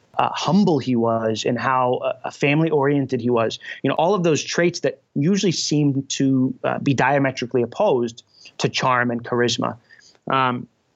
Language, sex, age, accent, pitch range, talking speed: English, male, 30-49, American, 120-150 Hz, 165 wpm